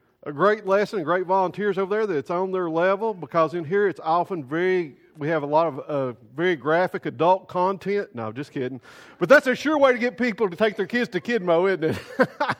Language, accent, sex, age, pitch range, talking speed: English, American, male, 50-69, 160-215 Hz, 225 wpm